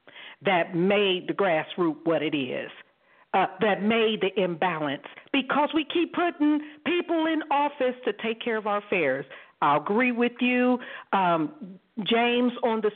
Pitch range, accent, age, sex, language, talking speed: 185-290 Hz, American, 50-69, female, English, 155 wpm